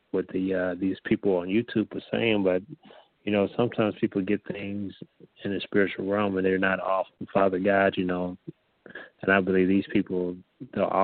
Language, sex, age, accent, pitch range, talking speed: English, male, 30-49, American, 95-105 Hz, 185 wpm